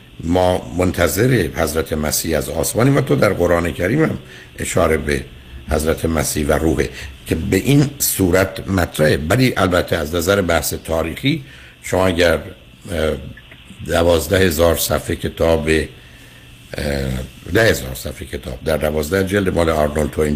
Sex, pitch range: male, 75-100 Hz